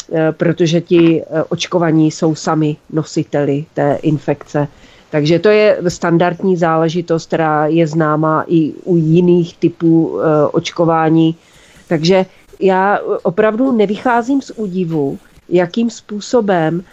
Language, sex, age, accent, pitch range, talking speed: Czech, female, 40-59, native, 170-205 Hz, 105 wpm